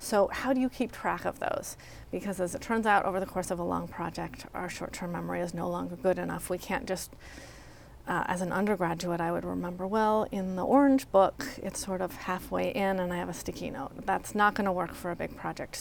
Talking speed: 240 wpm